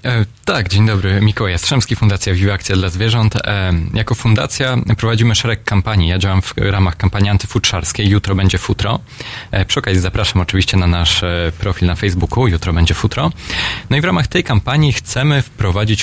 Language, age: Polish, 20-39